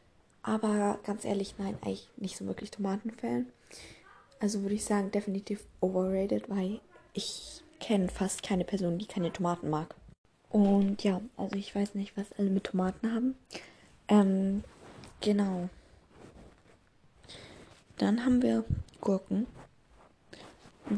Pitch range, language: 185-215 Hz, German